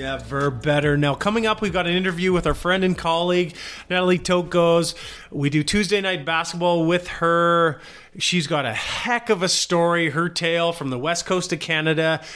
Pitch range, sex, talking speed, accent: 145-175 Hz, male, 190 wpm, American